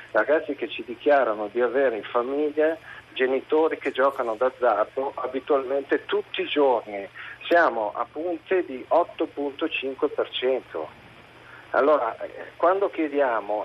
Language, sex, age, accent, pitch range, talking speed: Italian, male, 50-69, native, 130-175 Hz, 105 wpm